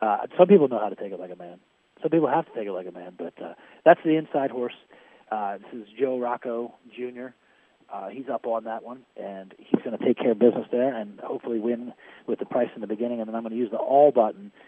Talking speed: 265 wpm